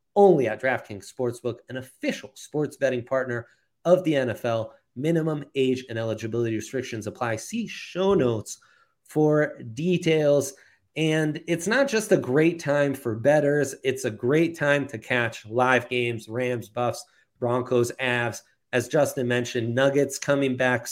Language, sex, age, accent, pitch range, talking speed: English, male, 30-49, American, 120-150 Hz, 145 wpm